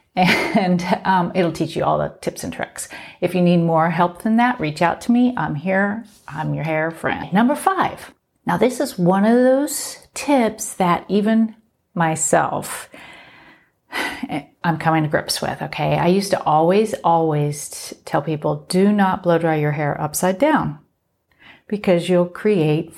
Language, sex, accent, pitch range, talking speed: English, female, American, 165-215 Hz, 165 wpm